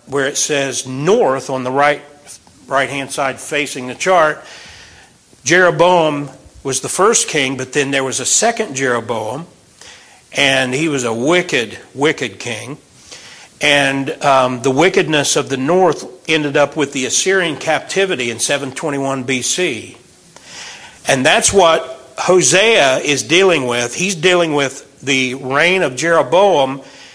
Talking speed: 135 wpm